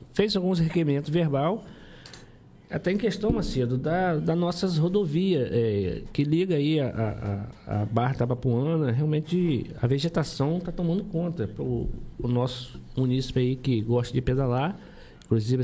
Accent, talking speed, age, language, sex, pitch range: Brazilian, 140 wpm, 50-69, Portuguese, male, 115-155 Hz